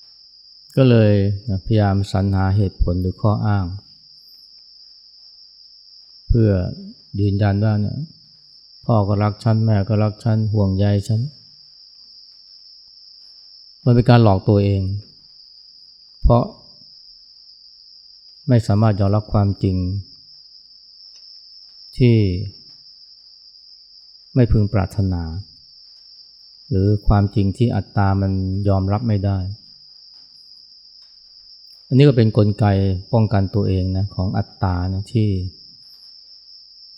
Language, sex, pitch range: Thai, male, 95-110 Hz